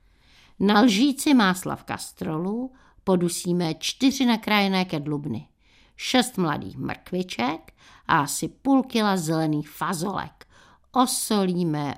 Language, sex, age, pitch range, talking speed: Czech, female, 60-79, 155-195 Hz, 95 wpm